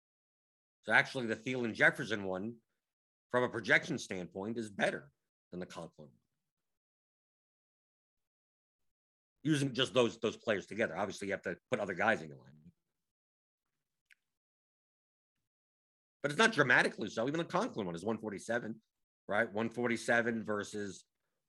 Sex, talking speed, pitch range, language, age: male, 130 wpm, 95-135 Hz, English, 50-69